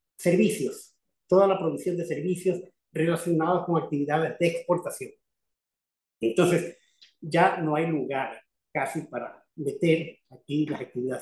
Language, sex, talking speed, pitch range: Spanish, male, 120 wpm, 155-185 Hz